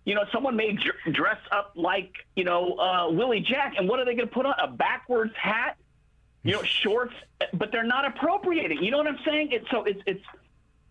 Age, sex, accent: 40-59, male, American